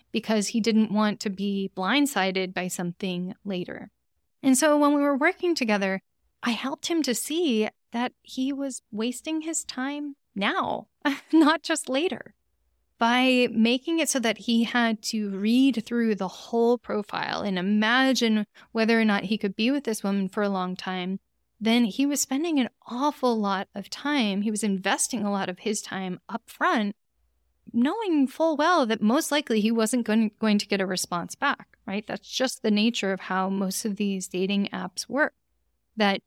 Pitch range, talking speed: 200-265 Hz, 175 wpm